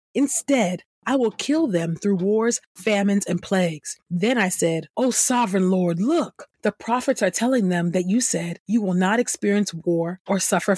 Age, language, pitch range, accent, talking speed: 30-49, English, 175-215 Hz, American, 180 wpm